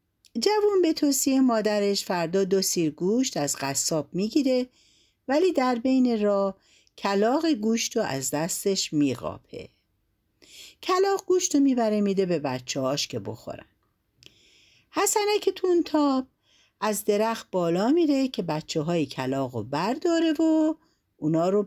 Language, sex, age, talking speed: Persian, female, 50-69, 125 wpm